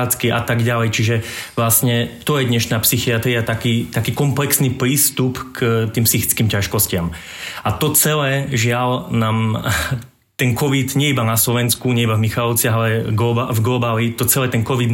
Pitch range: 110-120 Hz